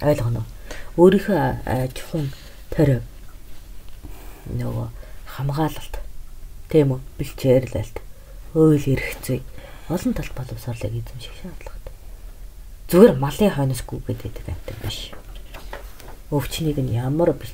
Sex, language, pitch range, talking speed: female, English, 110-155 Hz, 95 wpm